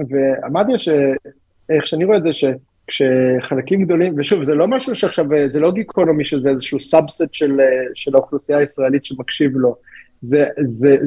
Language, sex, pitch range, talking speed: Hebrew, male, 135-190 Hz, 145 wpm